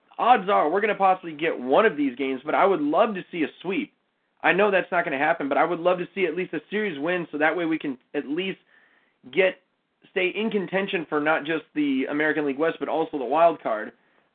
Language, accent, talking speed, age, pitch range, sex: English, American, 250 wpm, 30-49, 165-215 Hz, male